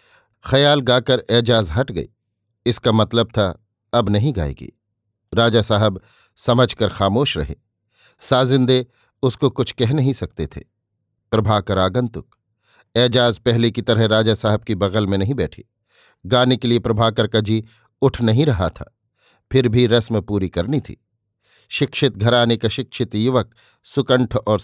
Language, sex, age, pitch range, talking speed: Hindi, male, 50-69, 105-125 Hz, 145 wpm